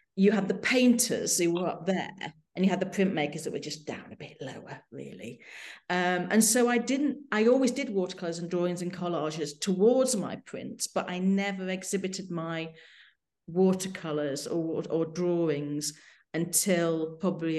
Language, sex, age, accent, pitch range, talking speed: English, female, 40-59, British, 165-200 Hz, 165 wpm